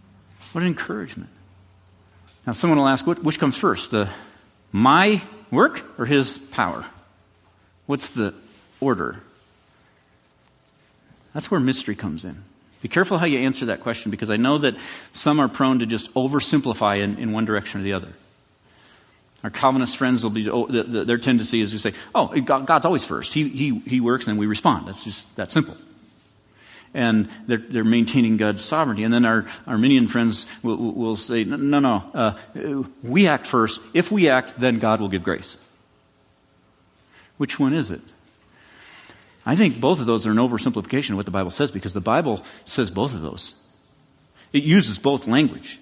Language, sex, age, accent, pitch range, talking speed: English, male, 50-69, American, 105-145 Hz, 170 wpm